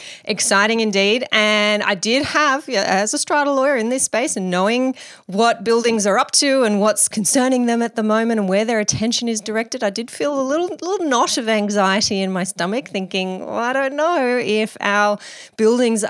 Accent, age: Australian, 30-49